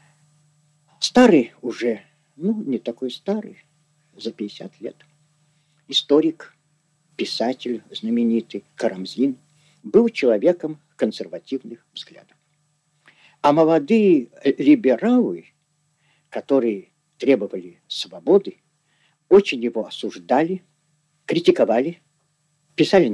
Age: 50-69